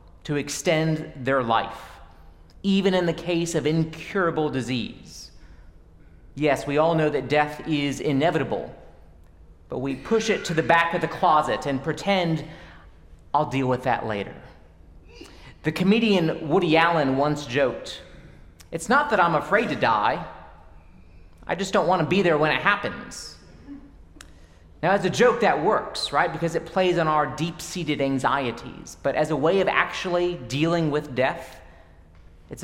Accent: American